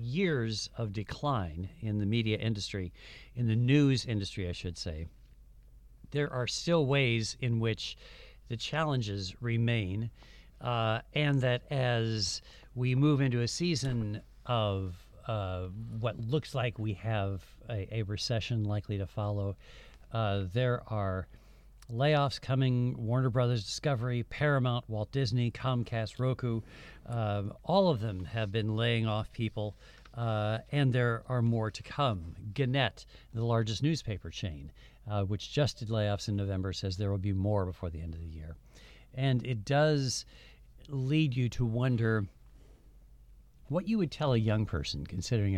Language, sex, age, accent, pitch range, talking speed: English, male, 50-69, American, 100-125 Hz, 145 wpm